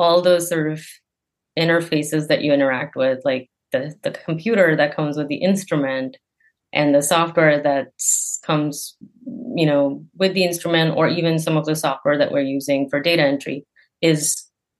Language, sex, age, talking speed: English, female, 30-49, 165 wpm